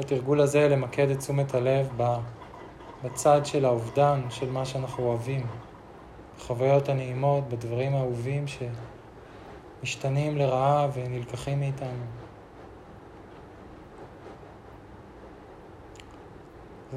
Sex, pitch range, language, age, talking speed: male, 120-140 Hz, Hebrew, 20-39, 80 wpm